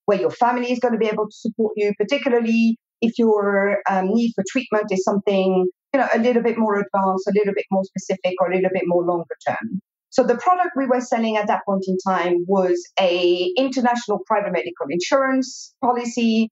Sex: female